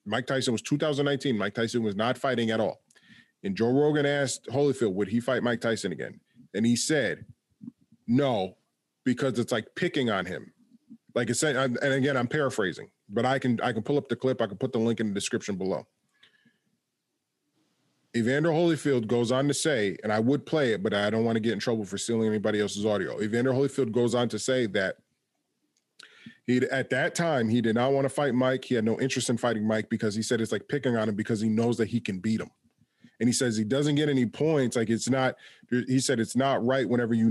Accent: American